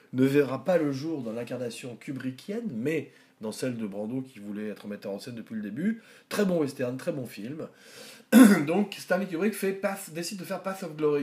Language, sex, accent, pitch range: French, male, French, 120-180 Hz